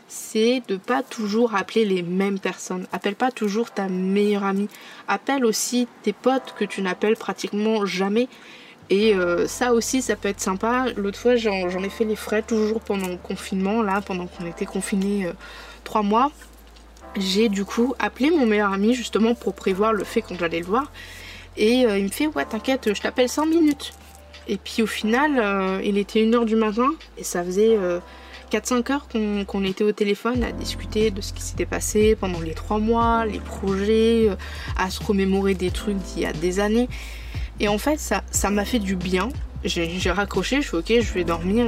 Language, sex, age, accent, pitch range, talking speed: French, female, 20-39, French, 195-235 Hz, 205 wpm